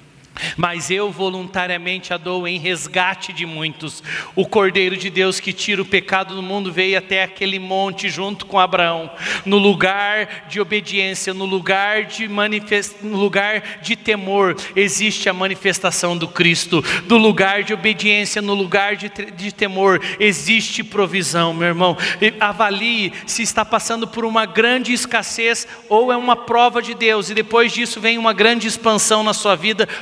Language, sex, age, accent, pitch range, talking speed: Portuguese, male, 40-59, Brazilian, 190-230 Hz, 160 wpm